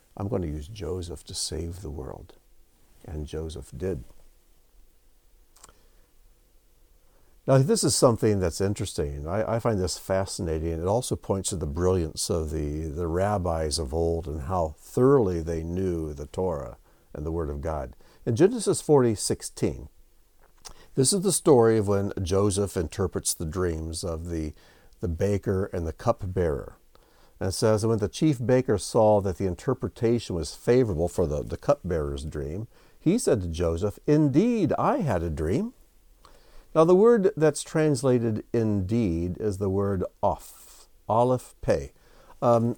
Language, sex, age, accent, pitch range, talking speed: English, male, 60-79, American, 80-115 Hz, 150 wpm